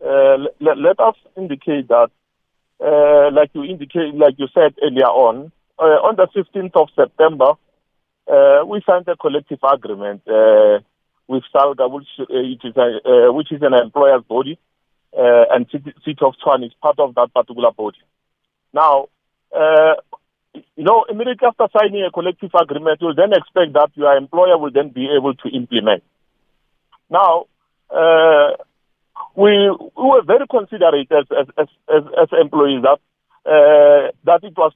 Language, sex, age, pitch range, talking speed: English, male, 50-69, 145-200 Hz, 160 wpm